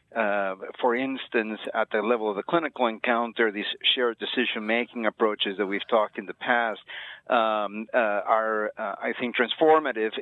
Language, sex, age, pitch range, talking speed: English, male, 40-59, 105-125 Hz, 160 wpm